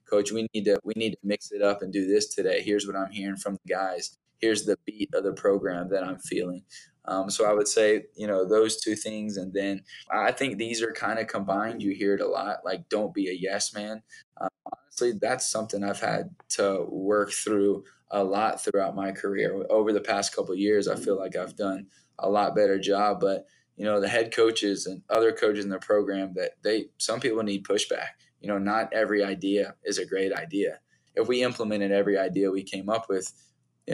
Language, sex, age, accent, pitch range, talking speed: English, male, 10-29, American, 95-110 Hz, 225 wpm